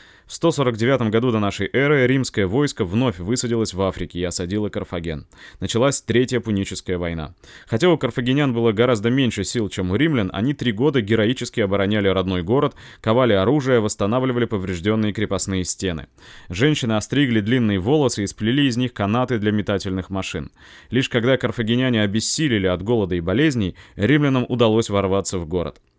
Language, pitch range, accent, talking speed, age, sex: Russian, 100-125 Hz, native, 155 wpm, 20-39, male